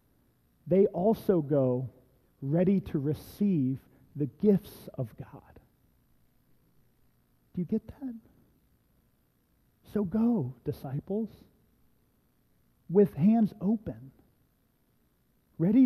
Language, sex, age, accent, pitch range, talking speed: English, male, 40-59, American, 130-195 Hz, 80 wpm